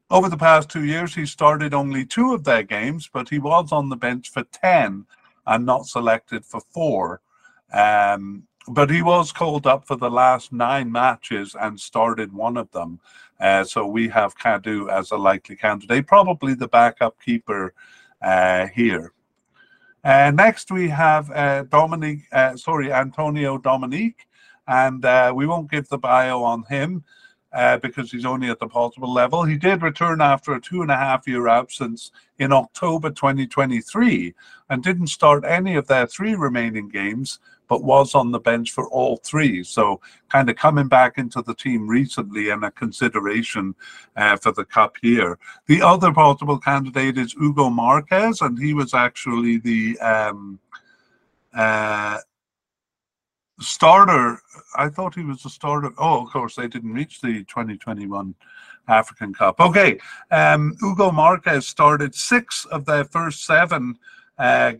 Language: English